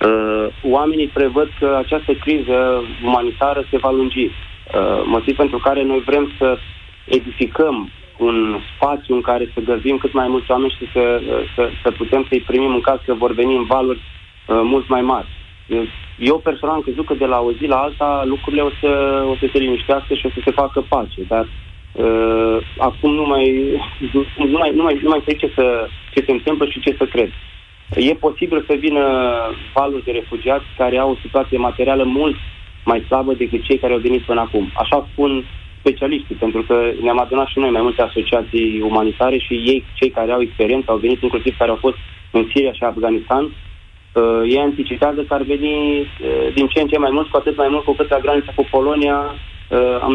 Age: 20-39